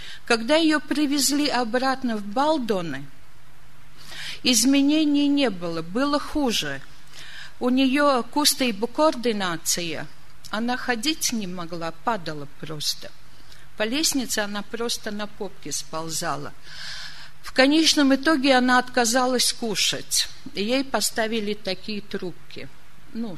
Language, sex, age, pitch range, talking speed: Russian, female, 50-69, 185-275 Hz, 105 wpm